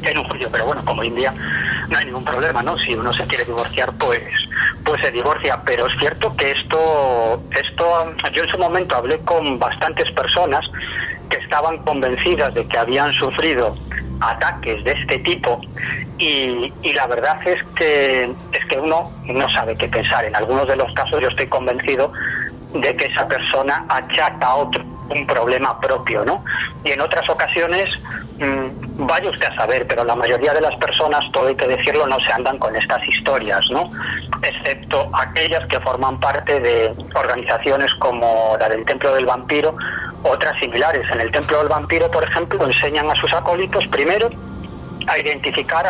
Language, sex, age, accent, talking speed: Spanish, male, 40-59, Spanish, 175 wpm